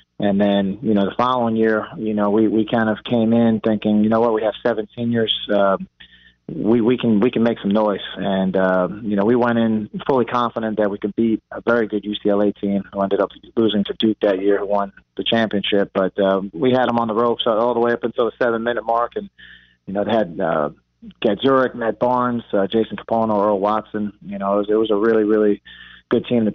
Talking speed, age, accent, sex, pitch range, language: 240 wpm, 30-49, American, male, 100-115 Hz, English